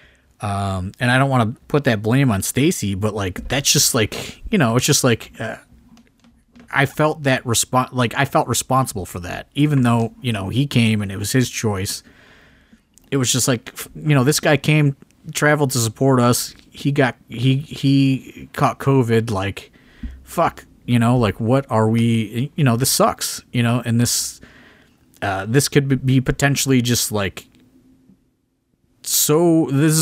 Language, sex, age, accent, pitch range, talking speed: English, male, 30-49, American, 110-135 Hz, 175 wpm